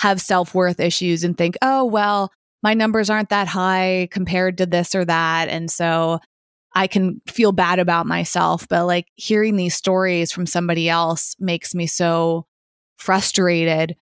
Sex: female